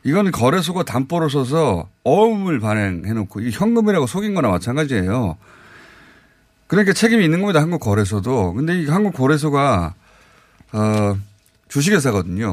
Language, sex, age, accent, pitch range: Korean, male, 30-49, native, 115-185 Hz